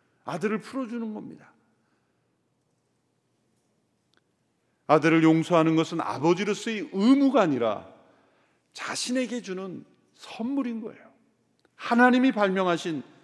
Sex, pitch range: male, 140-215 Hz